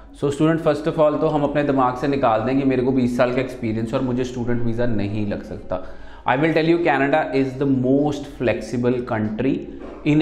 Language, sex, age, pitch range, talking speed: Punjabi, male, 30-49, 120-155 Hz, 205 wpm